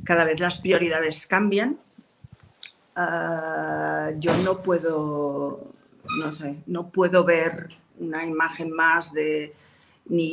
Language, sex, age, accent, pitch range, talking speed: Spanish, female, 40-59, Spanish, 155-190 Hz, 110 wpm